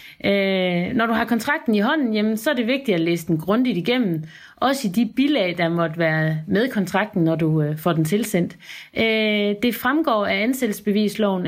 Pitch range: 175-230 Hz